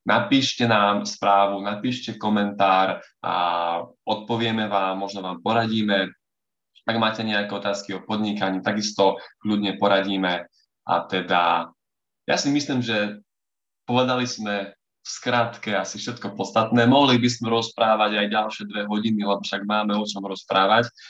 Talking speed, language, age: 135 wpm, Slovak, 20-39